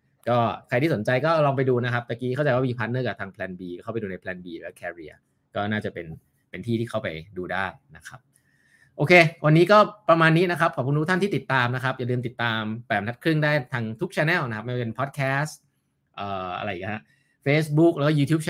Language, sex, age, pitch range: Thai, male, 20-39, 100-135 Hz